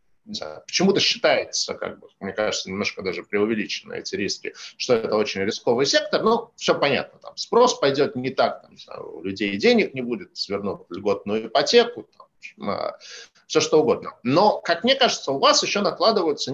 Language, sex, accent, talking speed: Russian, male, native, 165 wpm